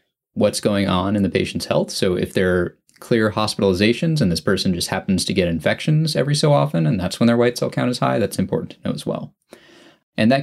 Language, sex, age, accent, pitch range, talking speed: English, male, 20-39, American, 100-135 Hz, 235 wpm